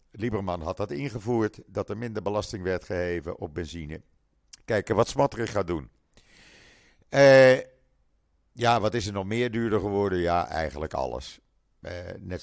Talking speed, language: 150 wpm, Dutch